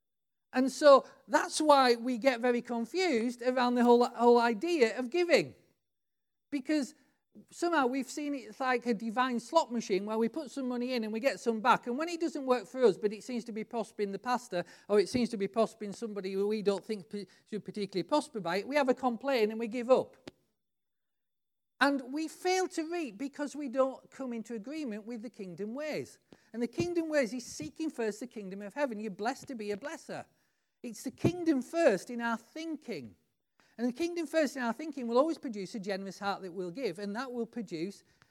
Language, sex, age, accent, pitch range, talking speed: English, male, 40-59, British, 215-285 Hz, 210 wpm